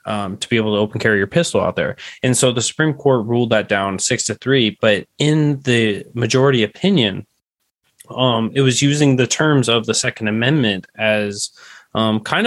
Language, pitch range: English, 105-125 Hz